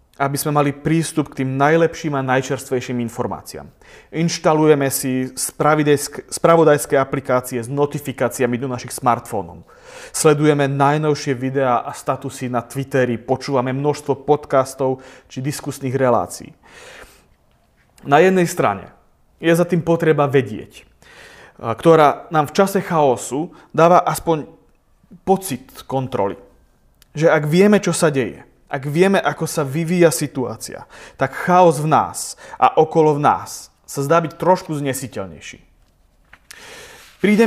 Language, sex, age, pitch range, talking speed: Slovak, male, 30-49, 130-165 Hz, 120 wpm